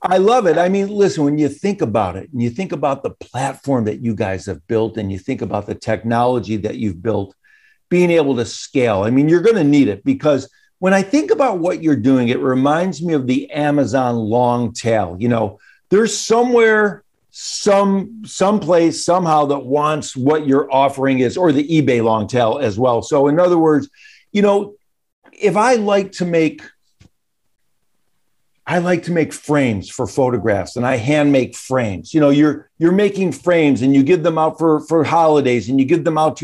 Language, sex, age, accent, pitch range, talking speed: English, male, 50-69, American, 135-190 Hz, 200 wpm